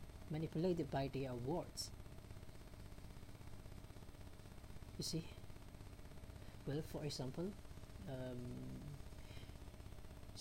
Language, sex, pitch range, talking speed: English, female, 100-160 Hz, 60 wpm